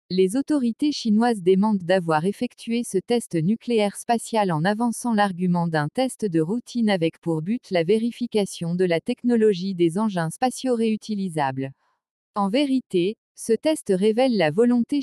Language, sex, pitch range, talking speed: French, female, 185-240 Hz, 145 wpm